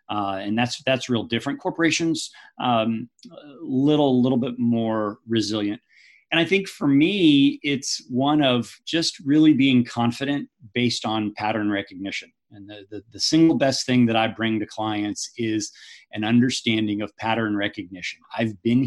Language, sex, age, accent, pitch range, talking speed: English, male, 40-59, American, 105-130 Hz, 155 wpm